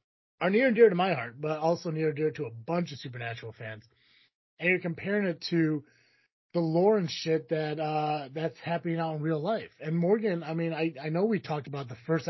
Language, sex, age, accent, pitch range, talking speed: English, male, 30-49, American, 135-170 Hz, 230 wpm